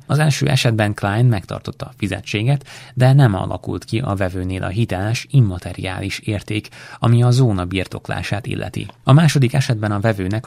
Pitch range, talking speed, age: 95-125 Hz, 155 wpm, 30-49